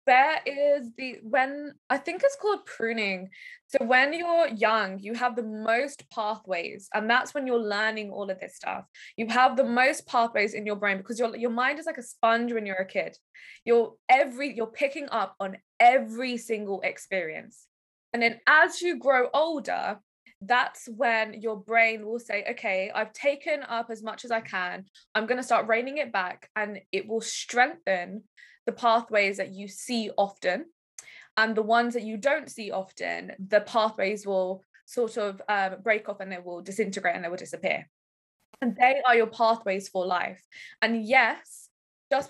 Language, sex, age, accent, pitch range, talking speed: English, female, 10-29, British, 210-260 Hz, 180 wpm